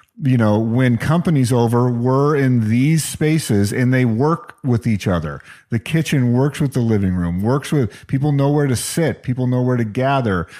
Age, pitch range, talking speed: 40-59, 110-155 Hz, 190 wpm